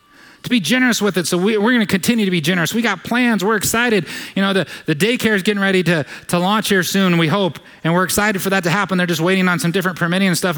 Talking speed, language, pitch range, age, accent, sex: 280 wpm, English, 190-235 Hz, 30-49, American, male